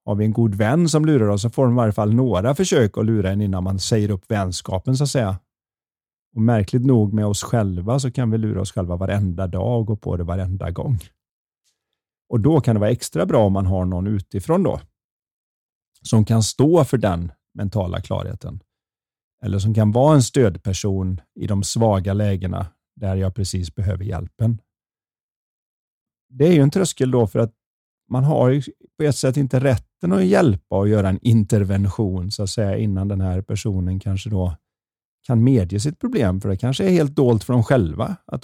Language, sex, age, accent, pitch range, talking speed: Swedish, male, 40-59, native, 95-130 Hz, 200 wpm